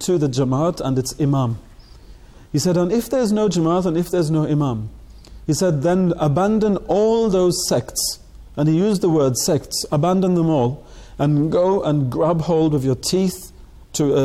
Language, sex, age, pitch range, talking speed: English, male, 40-59, 135-175 Hz, 180 wpm